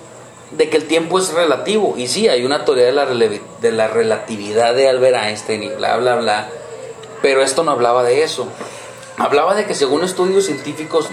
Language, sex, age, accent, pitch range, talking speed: Spanish, male, 30-49, Mexican, 130-205 Hz, 195 wpm